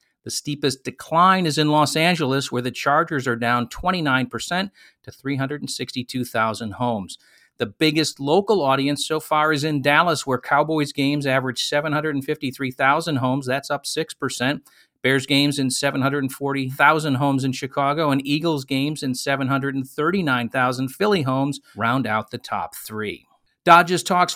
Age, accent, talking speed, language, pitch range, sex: 50-69, American, 135 wpm, English, 120-145 Hz, male